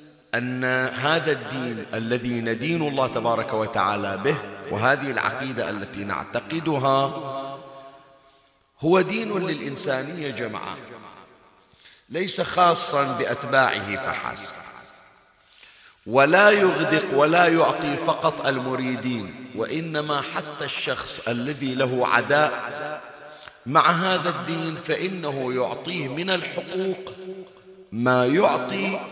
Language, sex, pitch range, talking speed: Arabic, male, 130-175 Hz, 85 wpm